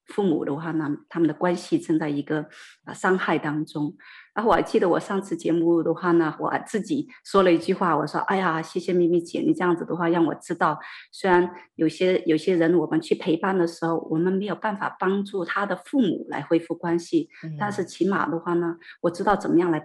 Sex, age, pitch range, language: female, 30-49, 160-200 Hz, Chinese